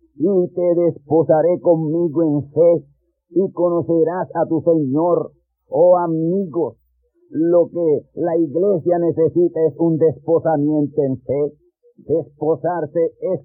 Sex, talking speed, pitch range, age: male, 110 wpm, 150-170 Hz, 50-69